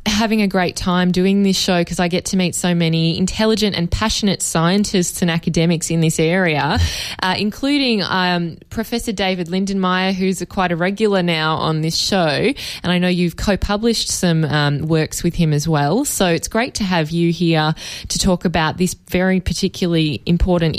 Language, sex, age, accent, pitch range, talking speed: English, female, 10-29, Australian, 155-190 Hz, 185 wpm